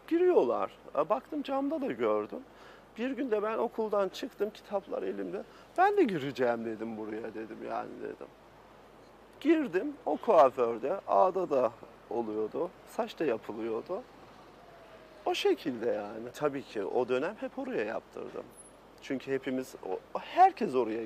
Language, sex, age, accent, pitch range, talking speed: Turkish, male, 40-59, native, 125-205 Hz, 125 wpm